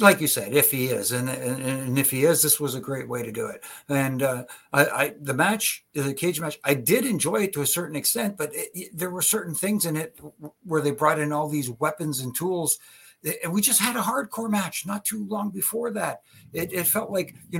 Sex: male